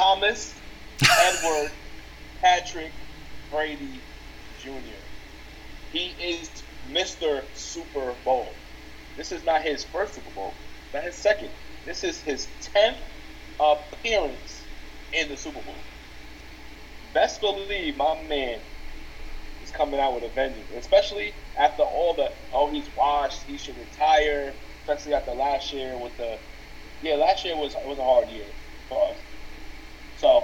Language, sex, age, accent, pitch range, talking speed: English, male, 30-49, American, 115-150 Hz, 130 wpm